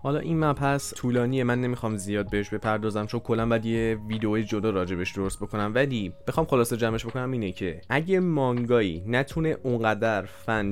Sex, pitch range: male, 105-135 Hz